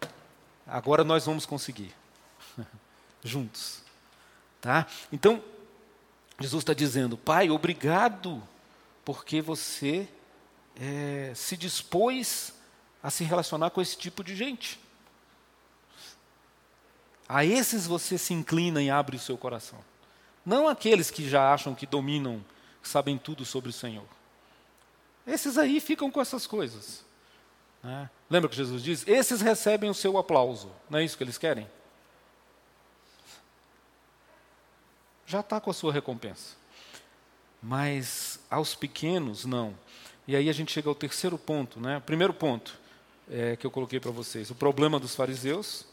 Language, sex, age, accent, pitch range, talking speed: Portuguese, male, 40-59, Brazilian, 125-175 Hz, 130 wpm